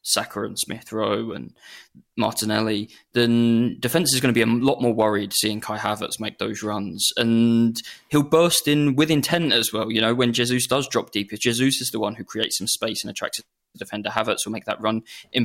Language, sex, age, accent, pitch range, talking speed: English, male, 20-39, British, 110-125 Hz, 210 wpm